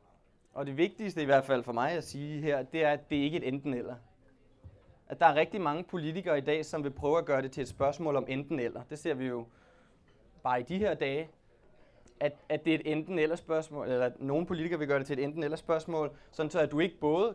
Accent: native